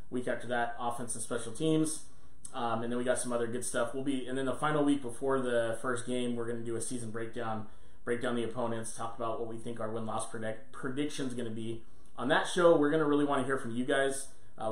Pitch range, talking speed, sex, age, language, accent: 115-135 Hz, 240 wpm, male, 30-49, English, American